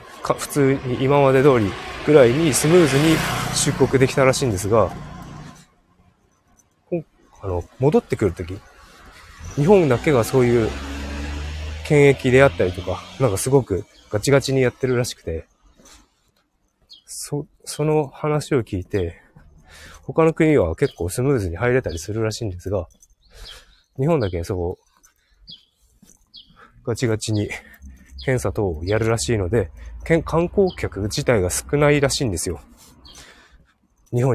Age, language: 20-39, Japanese